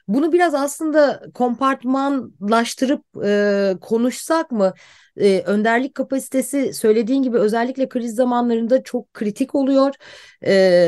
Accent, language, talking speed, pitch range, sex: native, Turkish, 105 wpm, 210-270 Hz, female